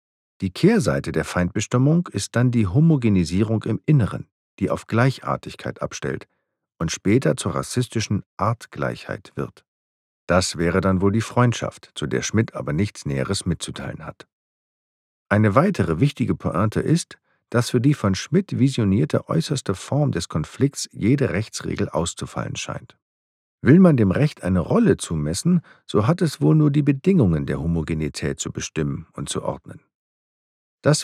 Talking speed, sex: 145 wpm, male